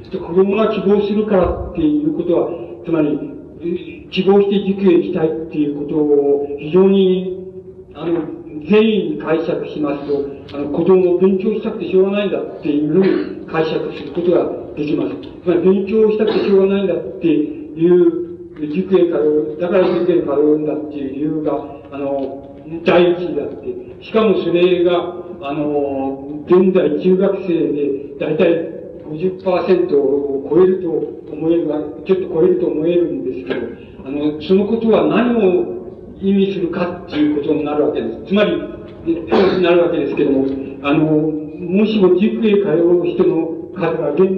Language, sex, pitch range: Japanese, male, 150-195 Hz